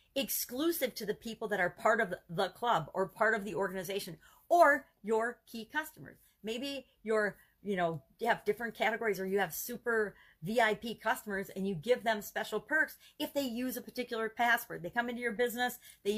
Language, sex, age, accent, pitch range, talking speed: English, female, 40-59, American, 185-235 Hz, 190 wpm